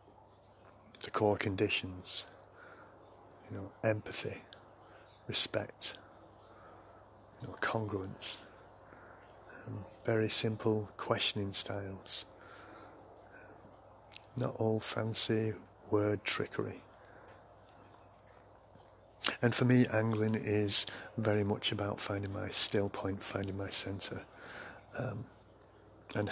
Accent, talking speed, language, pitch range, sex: British, 85 wpm, English, 100-110 Hz, male